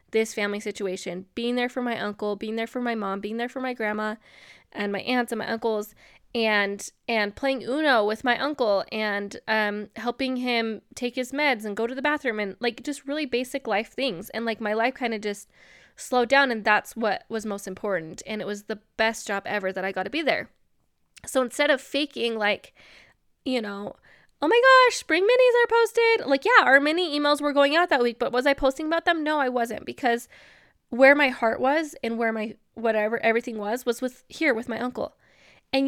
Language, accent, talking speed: English, American, 215 wpm